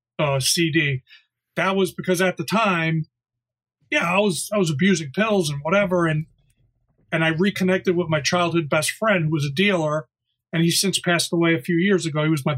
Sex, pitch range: male, 145-175 Hz